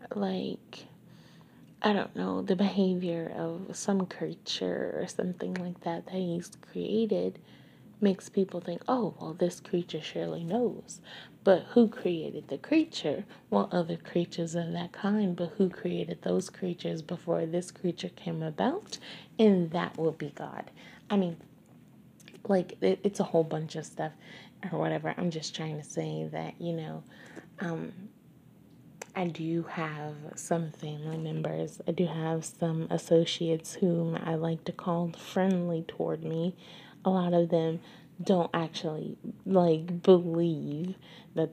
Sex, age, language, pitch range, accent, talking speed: female, 30-49, English, 165-195 Hz, American, 145 wpm